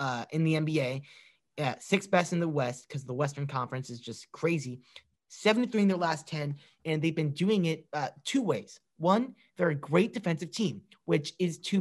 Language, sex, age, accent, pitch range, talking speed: English, male, 30-49, American, 145-190 Hz, 205 wpm